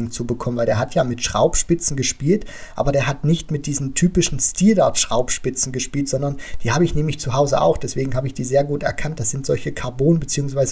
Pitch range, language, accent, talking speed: 135-160 Hz, German, German, 220 wpm